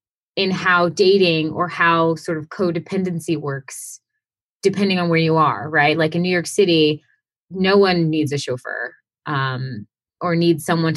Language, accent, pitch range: English, American, 155-190 Hz